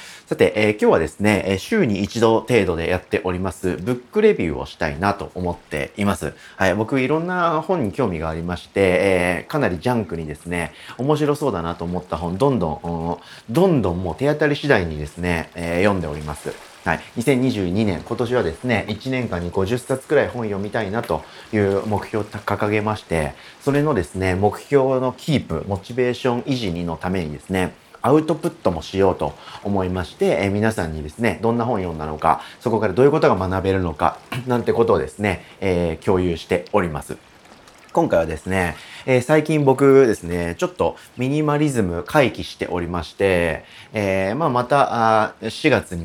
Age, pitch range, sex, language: 30-49, 85-125 Hz, male, Japanese